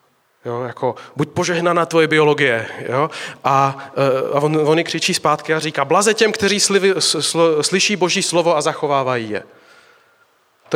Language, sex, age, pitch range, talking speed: Czech, male, 20-39, 130-160 Hz, 140 wpm